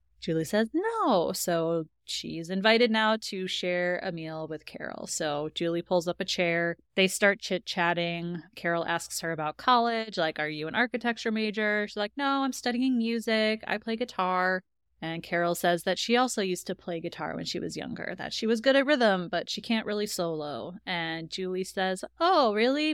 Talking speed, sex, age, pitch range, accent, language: 190 wpm, female, 20-39, 170-220 Hz, American, English